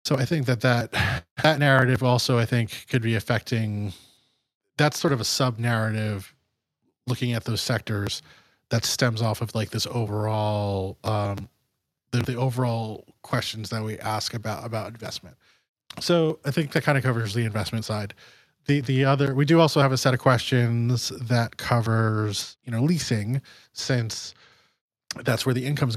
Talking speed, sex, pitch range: 165 wpm, male, 110-125 Hz